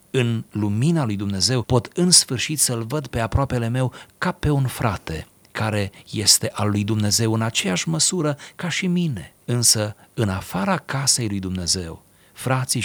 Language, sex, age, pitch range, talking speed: Romanian, male, 40-59, 100-130 Hz, 160 wpm